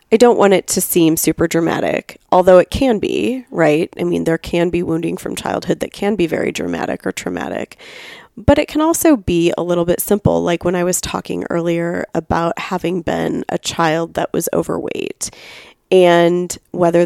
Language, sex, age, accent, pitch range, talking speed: English, female, 30-49, American, 165-190 Hz, 185 wpm